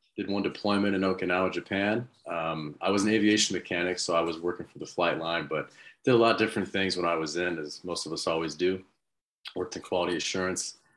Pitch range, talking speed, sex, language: 85-105 Hz, 225 wpm, male, English